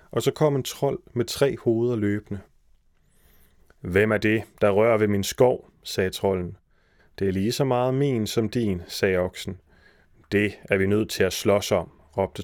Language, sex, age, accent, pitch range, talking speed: Danish, male, 30-49, native, 100-120 Hz, 185 wpm